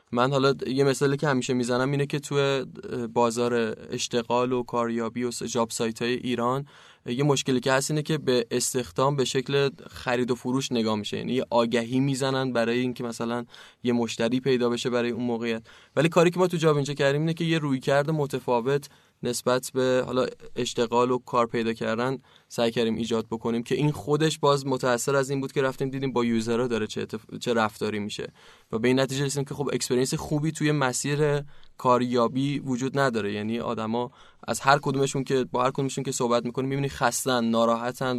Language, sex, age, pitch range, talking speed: Persian, male, 20-39, 120-140 Hz, 190 wpm